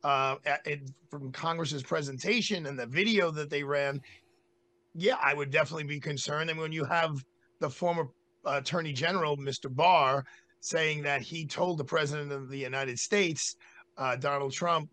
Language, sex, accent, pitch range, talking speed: English, male, American, 140-180 Hz, 160 wpm